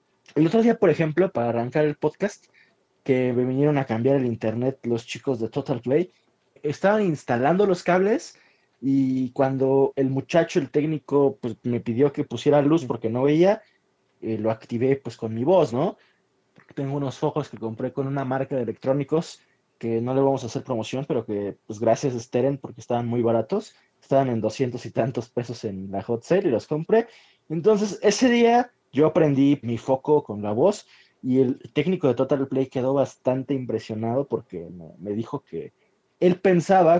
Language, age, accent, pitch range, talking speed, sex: Spanish, 20-39, Mexican, 120-155 Hz, 185 wpm, male